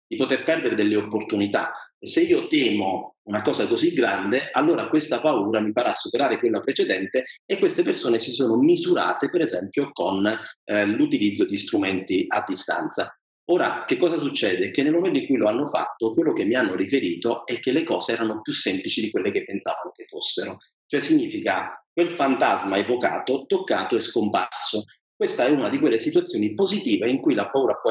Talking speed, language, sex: 185 wpm, Italian, male